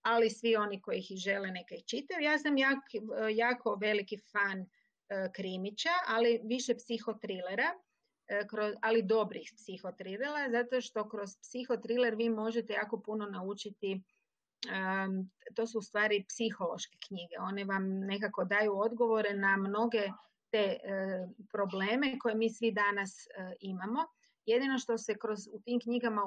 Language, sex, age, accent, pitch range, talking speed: Croatian, female, 30-49, native, 195-230 Hz, 145 wpm